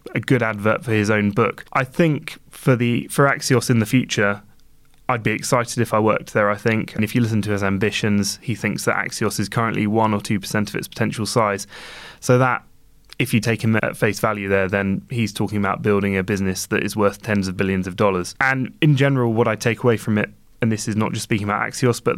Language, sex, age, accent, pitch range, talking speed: English, male, 20-39, British, 100-115 Hz, 240 wpm